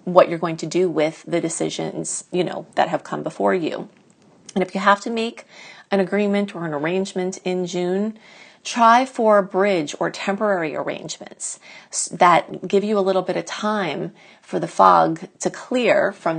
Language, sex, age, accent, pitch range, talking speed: English, female, 30-49, American, 175-210 Hz, 180 wpm